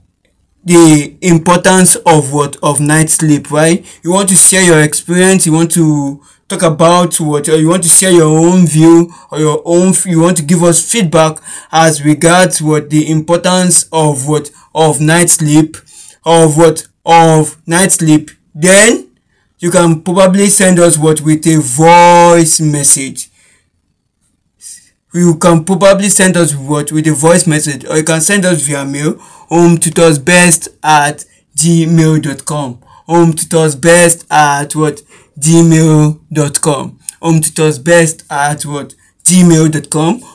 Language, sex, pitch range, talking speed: English, male, 150-175 Hz, 150 wpm